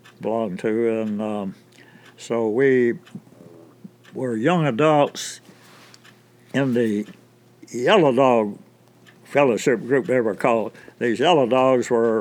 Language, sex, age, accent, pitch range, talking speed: English, male, 60-79, American, 115-130 Hz, 110 wpm